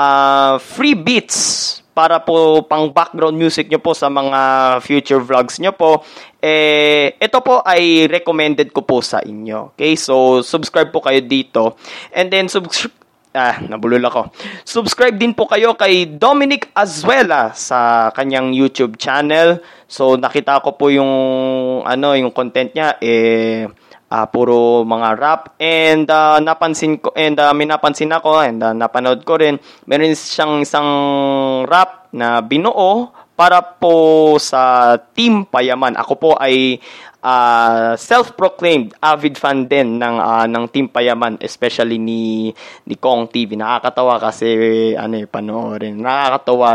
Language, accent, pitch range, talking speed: Filipino, native, 120-160 Hz, 140 wpm